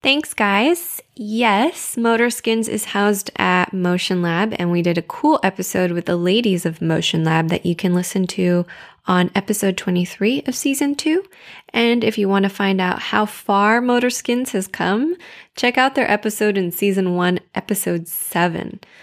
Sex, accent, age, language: female, American, 10-29, English